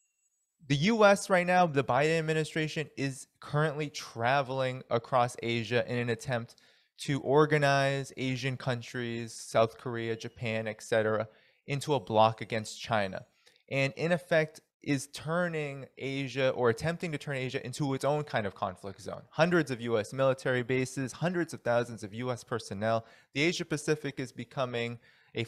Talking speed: 150 wpm